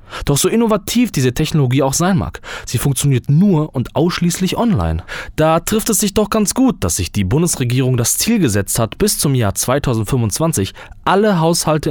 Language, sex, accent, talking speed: German, male, German, 175 wpm